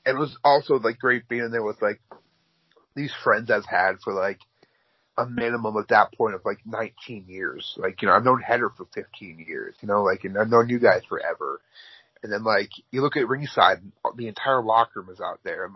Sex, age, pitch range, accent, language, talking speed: male, 30-49, 115-145 Hz, American, English, 220 wpm